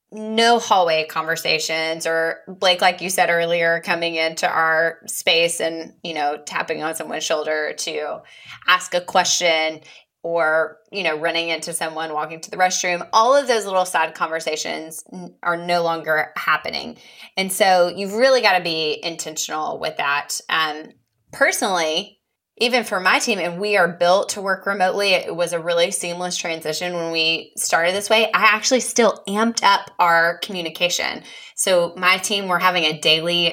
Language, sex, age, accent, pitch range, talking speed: English, female, 20-39, American, 165-200 Hz, 165 wpm